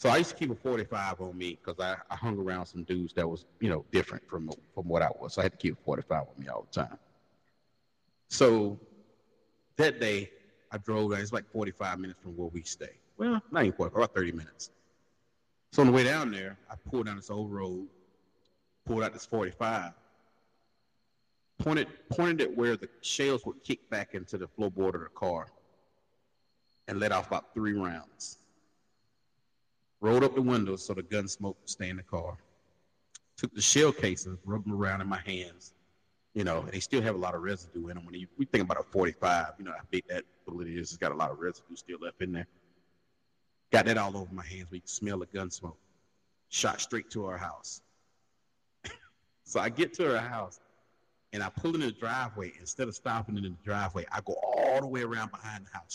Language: English